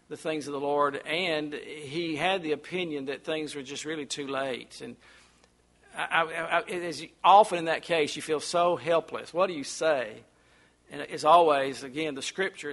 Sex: male